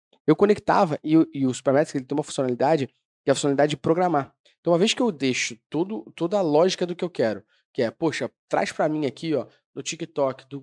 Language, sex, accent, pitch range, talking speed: Portuguese, male, Brazilian, 130-170 Hz, 230 wpm